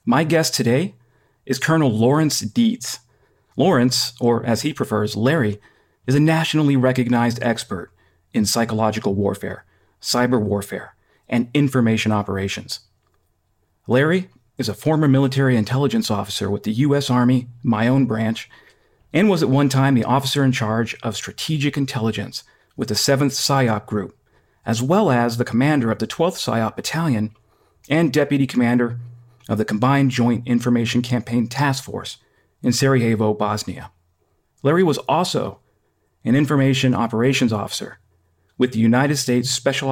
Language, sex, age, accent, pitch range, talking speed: English, male, 40-59, American, 110-135 Hz, 140 wpm